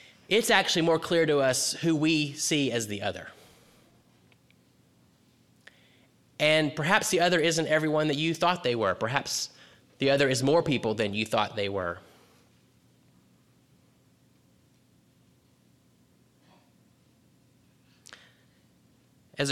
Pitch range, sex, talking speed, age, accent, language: 120-160 Hz, male, 110 wpm, 30-49, American, English